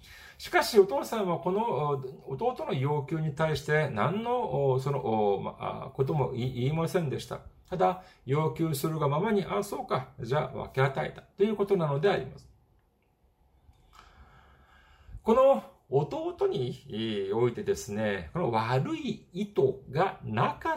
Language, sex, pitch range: Japanese, male, 125-190 Hz